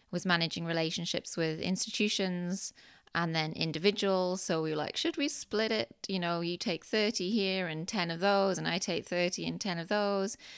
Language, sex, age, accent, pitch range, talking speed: English, female, 20-39, British, 165-200 Hz, 195 wpm